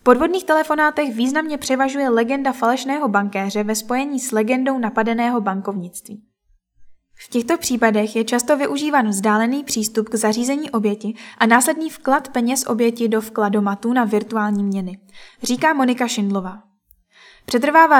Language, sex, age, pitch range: Czech, female, 10-29, 215-260 Hz